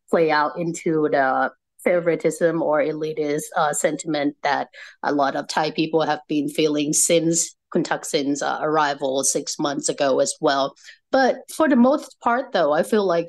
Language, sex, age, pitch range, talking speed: English, female, 30-49, 150-185 Hz, 165 wpm